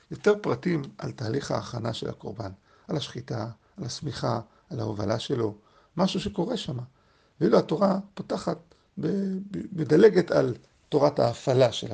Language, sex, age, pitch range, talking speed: Hebrew, male, 50-69, 125-175 Hz, 125 wpm